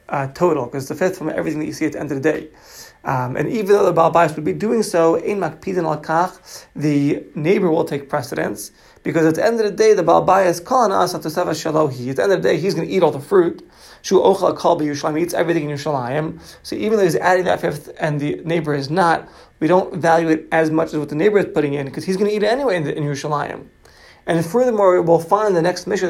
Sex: male